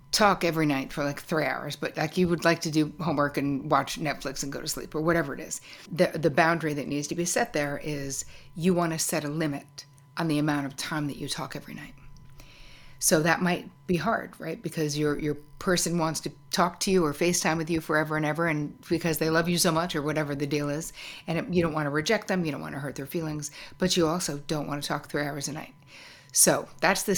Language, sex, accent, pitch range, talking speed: English, female, American, 145-170 Hz, 255 wpm